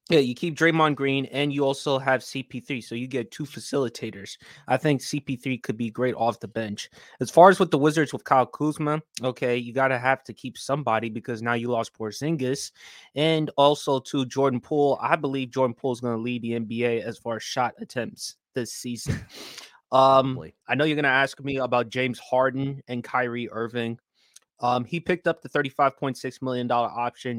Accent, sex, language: American, male, English